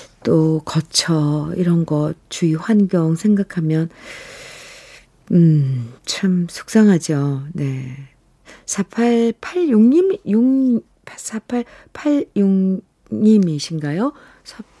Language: Korean